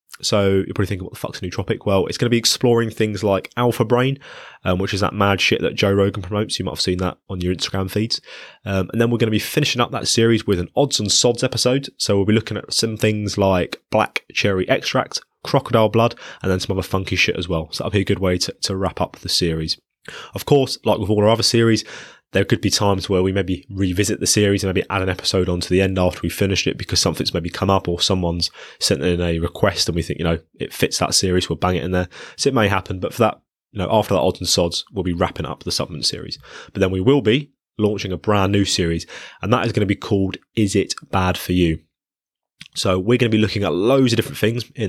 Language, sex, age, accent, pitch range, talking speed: English, male, 20-39, British, 95-115 Hz, 270 wpm